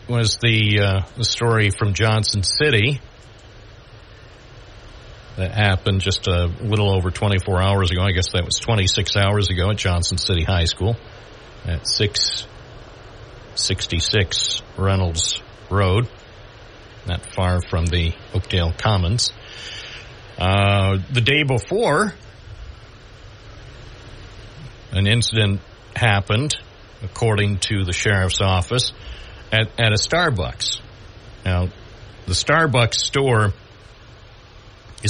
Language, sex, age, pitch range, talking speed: English, male, 60-79, 95-115 Hz, 100 wpm